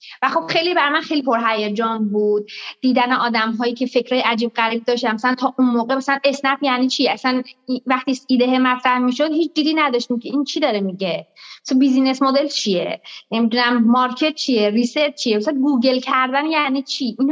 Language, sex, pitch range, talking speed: Persian, female, 230-295 Hz, 185 wpm